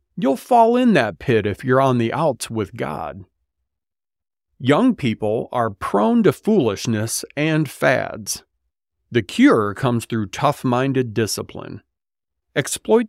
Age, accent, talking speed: 40-59, American, 125 wpm